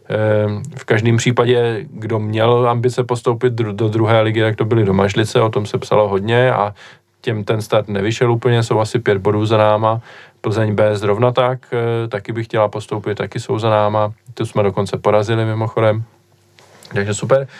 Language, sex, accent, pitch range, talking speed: Czech, male, native, 105-130 Hz, 175 wpm